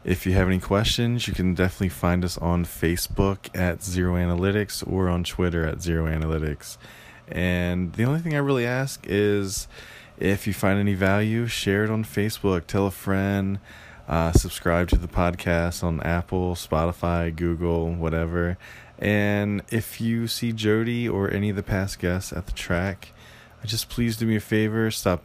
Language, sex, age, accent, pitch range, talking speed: English, male, 20-39, American, 85-100 Hz, 170 wpm